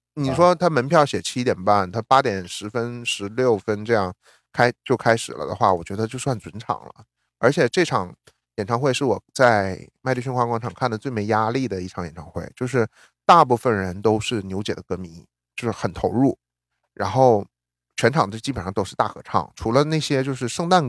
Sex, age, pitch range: male, 30-49, 100-130 Hz